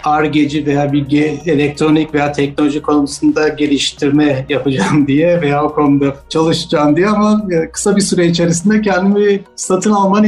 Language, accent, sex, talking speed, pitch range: Turkish, native, male, 135 wpm, 145-180 Hz